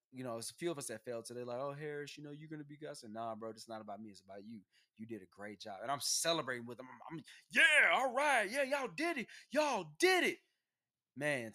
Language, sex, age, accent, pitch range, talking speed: English, male, 20-39, American, 115-165 Hz, 270 wpm